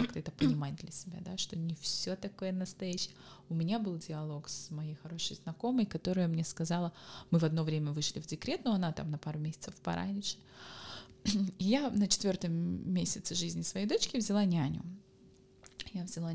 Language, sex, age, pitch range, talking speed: Russian, female, 20-39, 170-205 Hz, 170 wpm